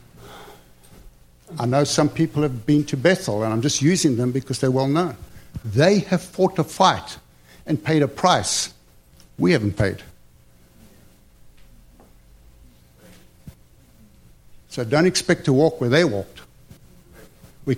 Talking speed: 130 wpm